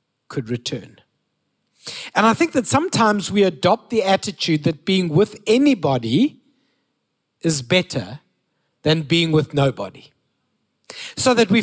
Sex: male